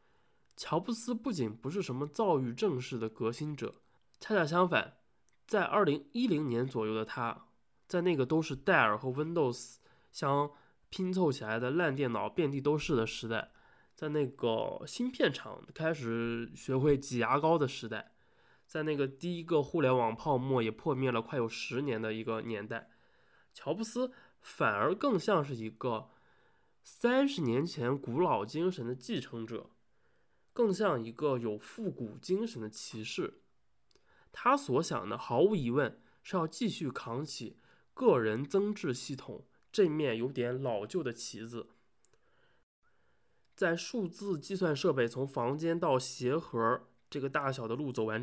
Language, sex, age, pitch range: Chinese, male, 20-39, 115-160 Hz